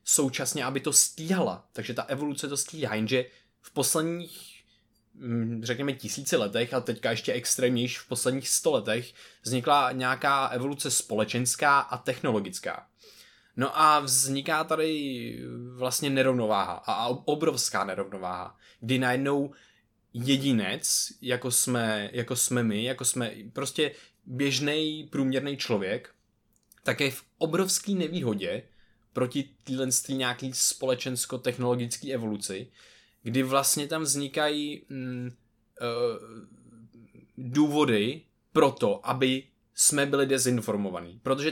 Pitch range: 120-140 Hz